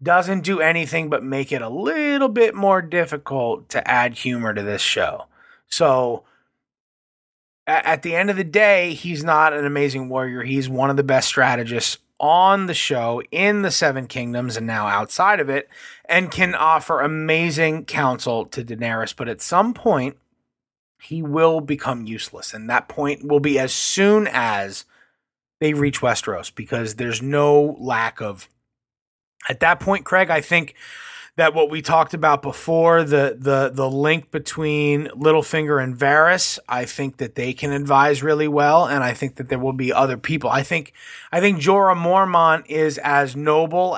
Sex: male